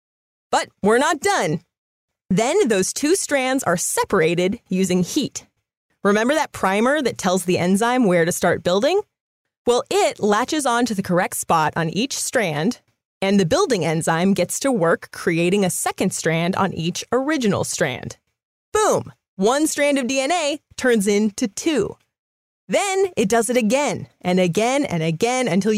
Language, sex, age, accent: English, female, 30-49, American